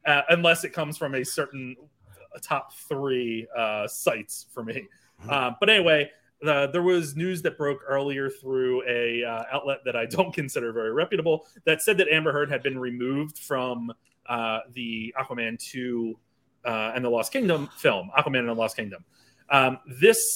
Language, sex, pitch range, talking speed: English, male, 120-155 Hz, 175 wpm